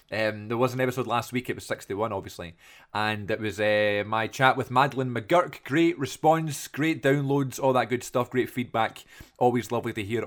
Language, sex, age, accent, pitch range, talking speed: English, male, 20-39, British, 110-140 Hz, 200 wpm